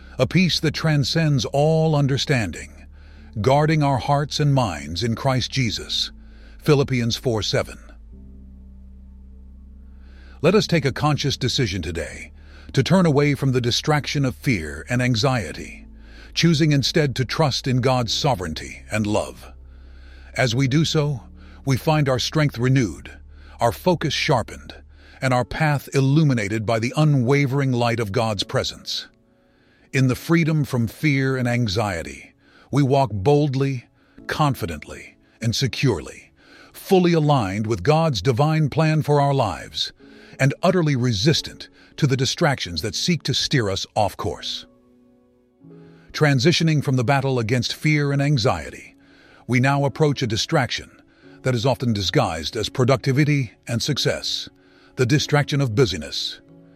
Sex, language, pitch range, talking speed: male, English, 90-145 Hz, 130 wpm